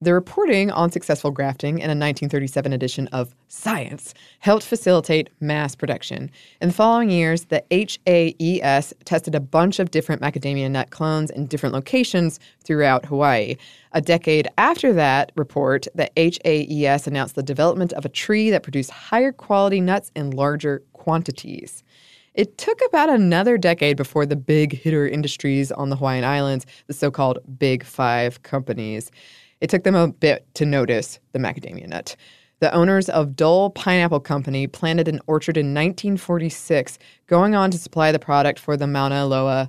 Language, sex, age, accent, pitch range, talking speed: English, female, 20-39, American, 140-175 Hz, 155 wpm